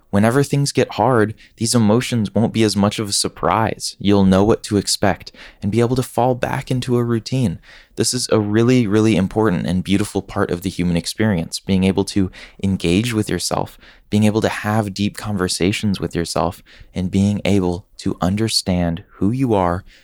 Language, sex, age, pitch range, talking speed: English, male, 20-39, 90-110 Hz, 185 wpm